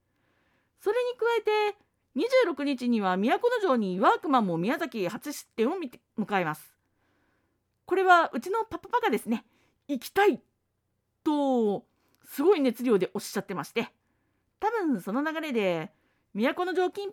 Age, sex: 40-59, female